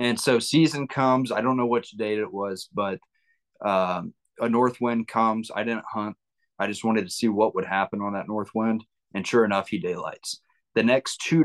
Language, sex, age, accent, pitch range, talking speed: English, male, 30-49, American, 105-120 Hz, 210 wpm